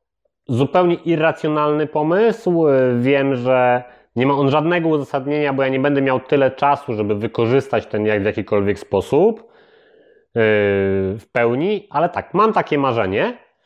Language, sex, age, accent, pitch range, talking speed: Polish, male, 30-49, native, 105-145 Hz, 135 wpm